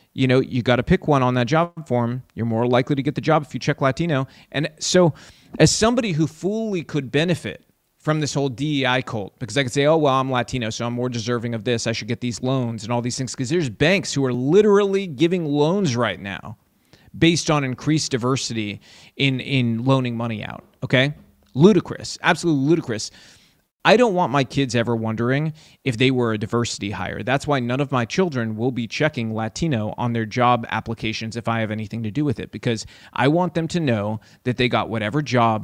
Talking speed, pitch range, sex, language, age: 215 wpm, 115-150 Hz, male, English, 30-49